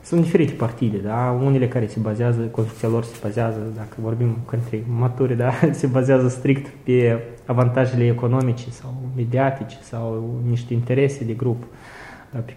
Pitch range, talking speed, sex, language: 120-140 Hz, 150 wpm, male, Romanian